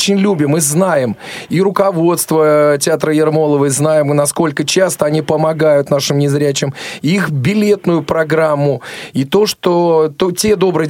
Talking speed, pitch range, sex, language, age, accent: 140 wpm, 140-180 Hz, male, Russian, 30-49, native